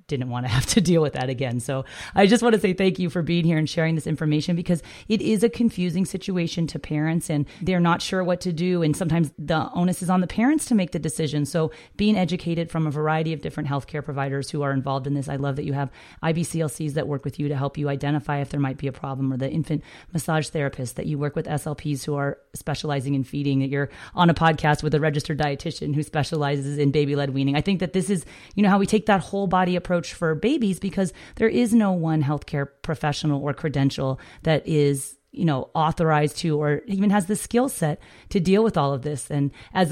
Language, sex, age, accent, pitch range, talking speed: English, female, 30-49, American, 145-185 Hz, 240 wpm